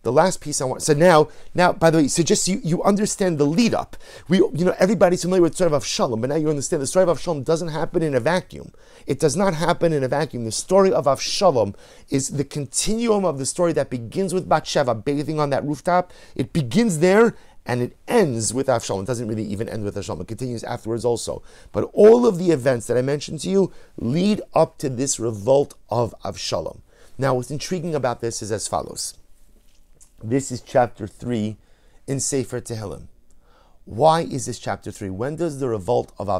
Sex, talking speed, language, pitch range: male, 215 wpm, English, 115-170 Hz